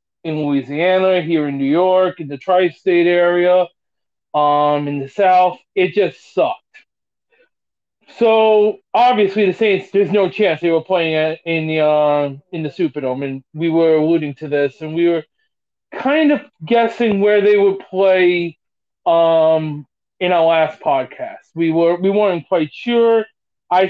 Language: English